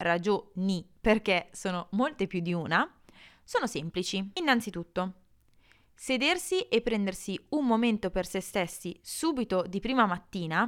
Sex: female